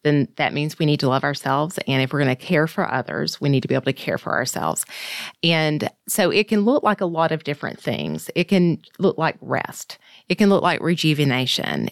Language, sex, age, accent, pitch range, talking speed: English, female, 30-49, American, 140-180 Hz, 230 wpm